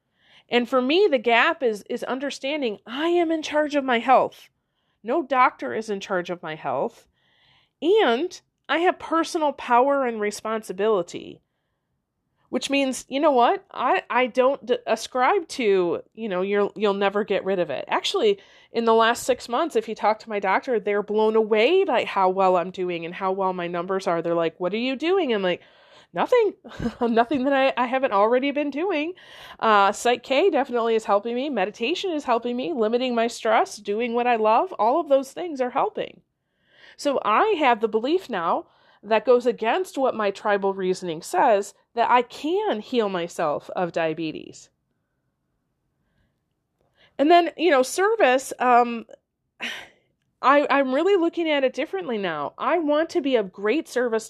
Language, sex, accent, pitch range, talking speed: English, female, American, 205-290 Hz, 175 wpm